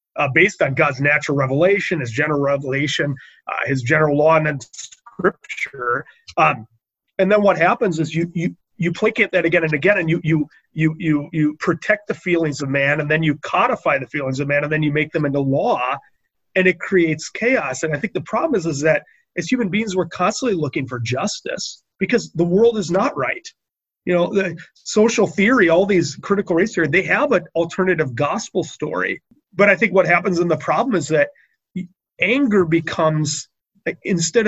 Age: 30-49